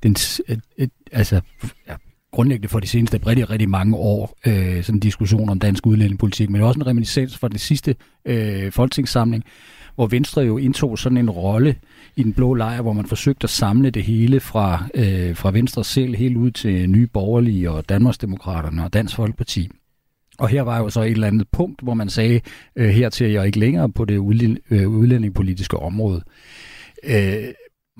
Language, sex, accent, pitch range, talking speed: Danish, male, native, 100-125 Hz, 185 wpm